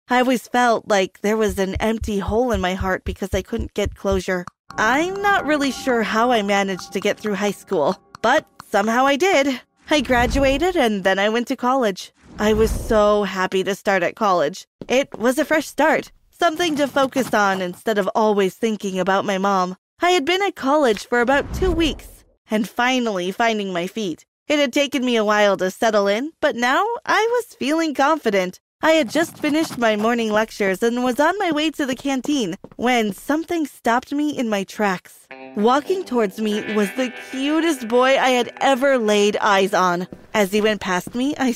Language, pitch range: English, 205-275 Hz